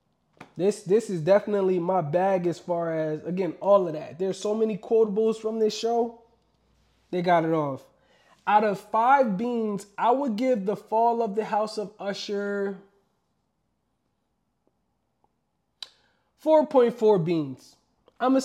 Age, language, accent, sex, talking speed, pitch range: 20-39, English, American, male, 135 wpm, 185-235 Hz